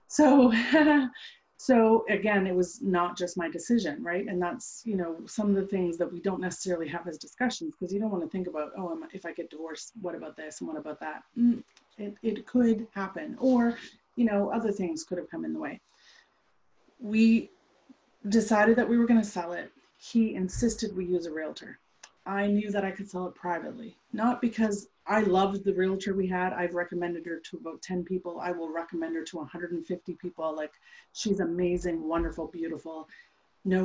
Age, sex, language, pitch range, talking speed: 30-49, female, English, 175-225 Hz, 195 wpm